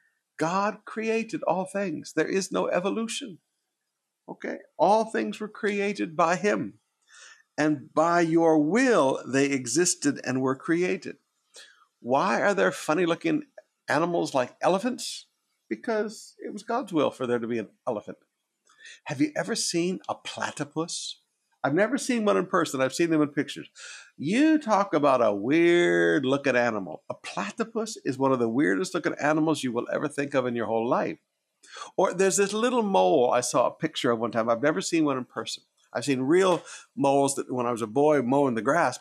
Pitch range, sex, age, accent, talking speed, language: 140-215 Hz, male, 50-69, American, 175 wpm, English